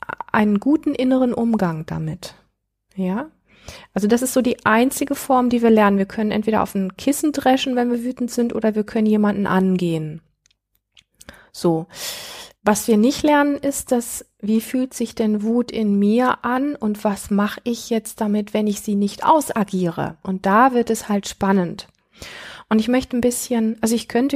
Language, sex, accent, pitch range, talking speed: German, female, German, 195-230 Hz, 175 wpm